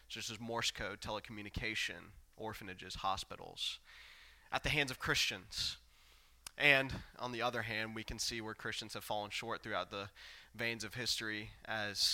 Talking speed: 155 wpm